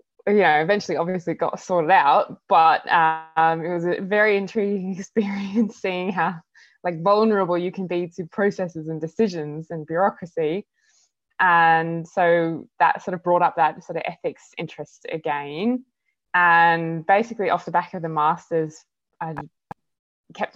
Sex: female